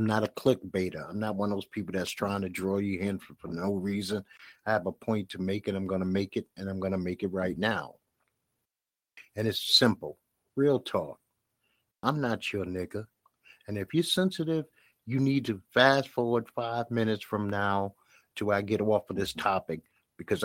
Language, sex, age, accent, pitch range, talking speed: English, male, 50-69, American, 95-115 Hz, 205 wpm